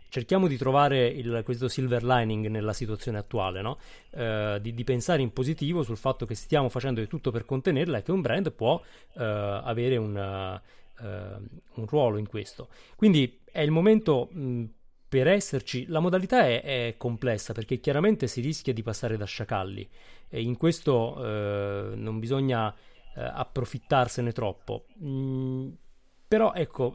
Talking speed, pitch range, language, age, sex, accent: 160 wpm, 110-140 Hz, Italian, 30-49, male, native